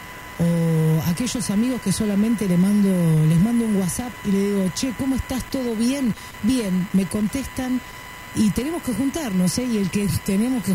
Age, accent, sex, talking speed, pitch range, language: 50-69, Argentinian, female, 180 wpm, 160-220 Hz, Spanish